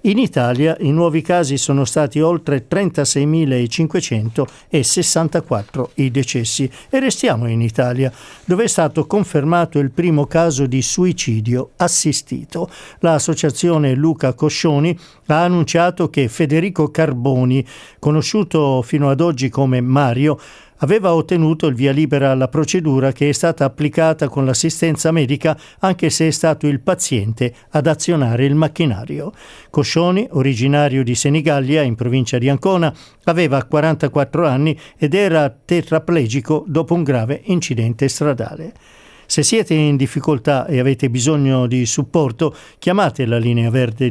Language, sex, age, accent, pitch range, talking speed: Italian, male, 50-69, native, 135-165 Hz, 130 wpm